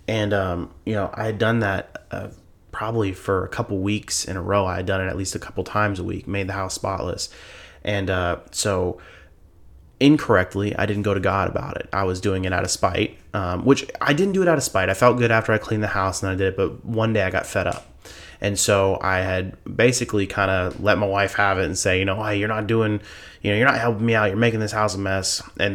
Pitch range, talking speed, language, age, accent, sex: 95-110 Hz, 260 wpm, English, 20-39, American, male